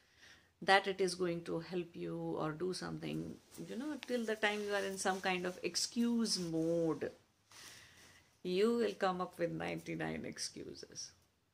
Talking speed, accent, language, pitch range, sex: 155 wpm, Indian, English, 125-190 Hz, female